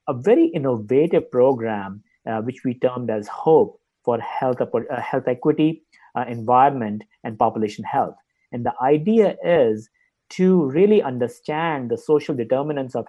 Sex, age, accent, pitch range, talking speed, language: male, 50-69, Indian, 115-150 Hz, 140 wpm, English